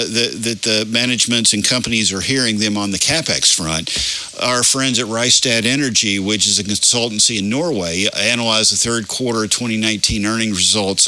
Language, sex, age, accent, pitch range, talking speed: English, male, 50-69, American, 105-120 Hz, 170 wpm